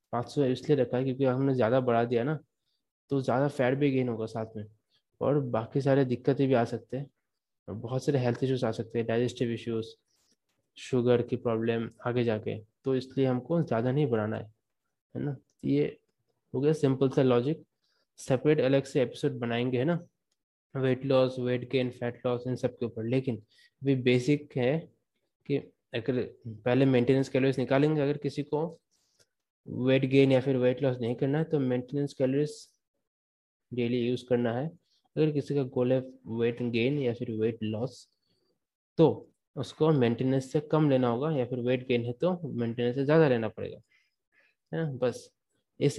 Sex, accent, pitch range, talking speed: male, native, 120-140 Hz, 175 wpm